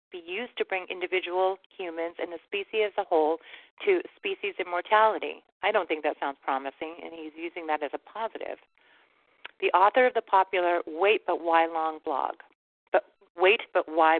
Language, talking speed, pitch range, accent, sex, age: English, 180 wpm, 165-215 Hz, American, female, 40-59